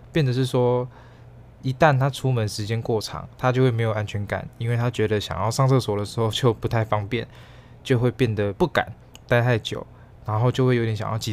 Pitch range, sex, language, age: 110-125 Hz, male, Chinese, 20-39